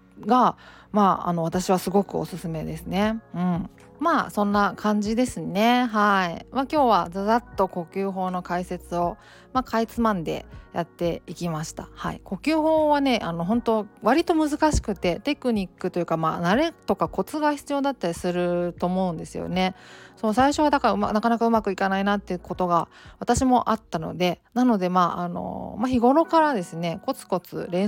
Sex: female